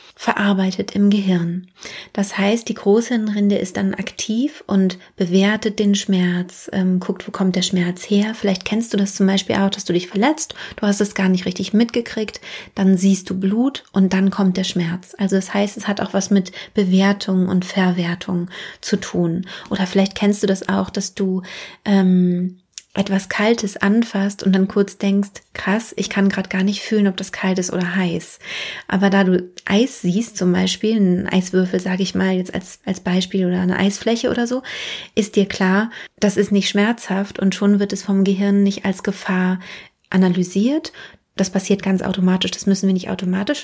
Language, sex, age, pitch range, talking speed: German, female, 30-49, 185-205 Hz, 190 wpm